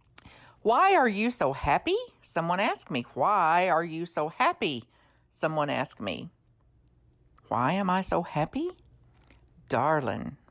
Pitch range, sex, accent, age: 165-245 Hz, female, American, 50-69